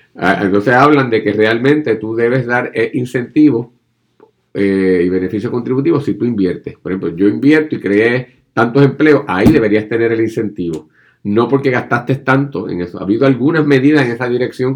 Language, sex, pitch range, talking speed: Spanish, male, 100-130 Hz, 165 wpm